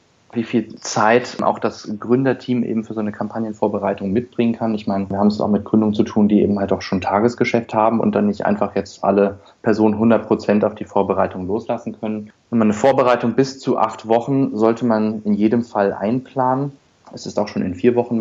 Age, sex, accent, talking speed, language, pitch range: 20-39, male, German, 210 wpm, German, 105-120 Hz